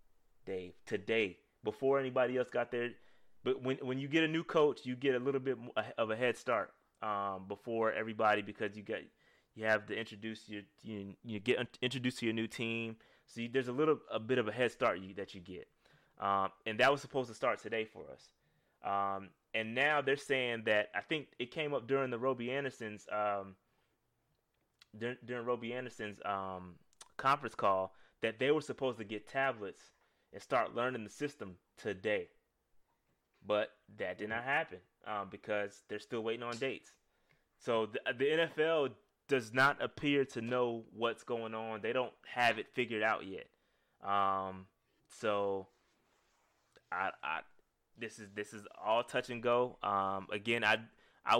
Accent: American